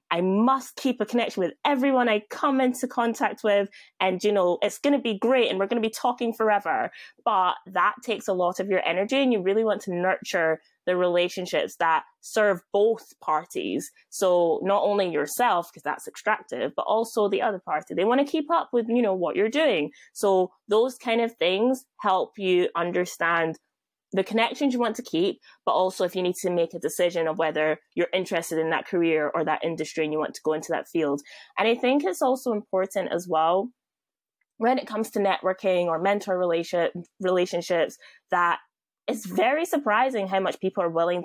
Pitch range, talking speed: 175-230 Hz, 200 wpm